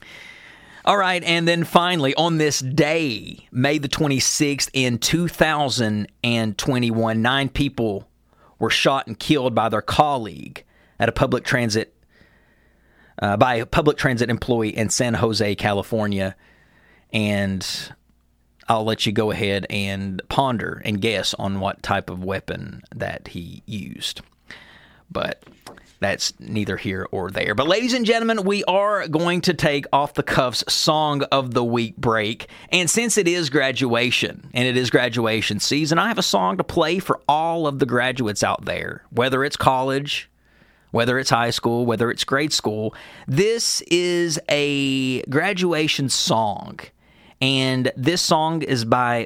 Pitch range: 110-155 Hz